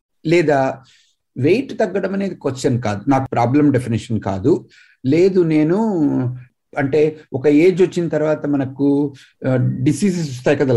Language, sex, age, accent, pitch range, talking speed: Telugu, male, 50-69, native, 125-165 Hz, 115 wpm